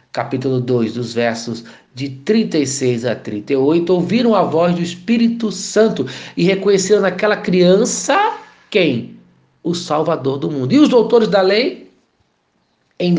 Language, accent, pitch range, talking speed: Portuguese, Brazilian, 140-205 Hz, 130 wpm